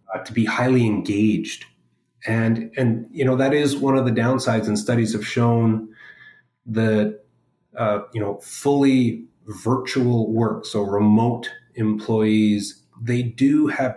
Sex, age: male, 30-49